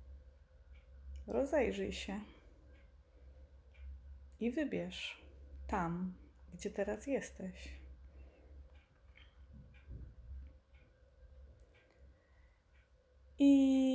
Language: Polish